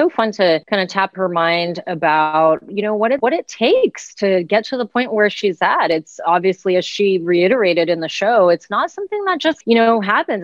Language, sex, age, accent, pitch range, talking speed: English, female, 30-49, American, 175-225 Hz, 230 wpm